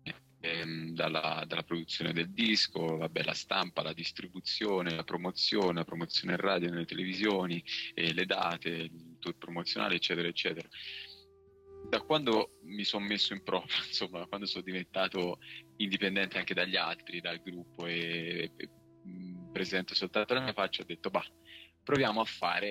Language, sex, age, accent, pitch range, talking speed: Italian, male, 20-39, native, 85-100 Hz, 140 wpm